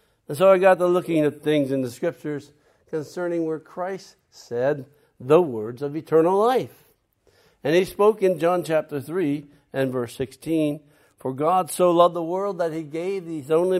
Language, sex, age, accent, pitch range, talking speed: English, male, 60-79, American, 125-165 Hz, 180 wpm